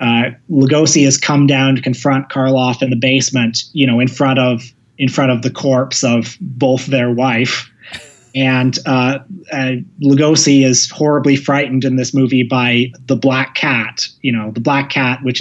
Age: 30-49